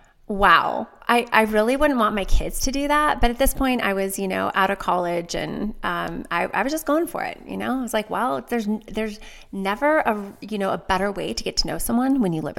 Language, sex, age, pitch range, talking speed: English, female, 30-49, 190-235 Hz, 260 wpm